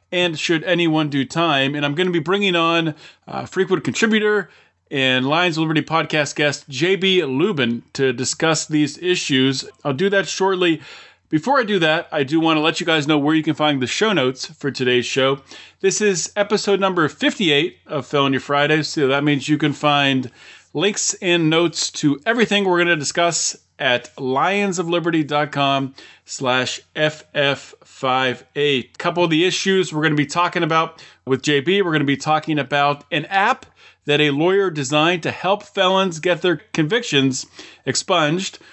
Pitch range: 145-185 Hz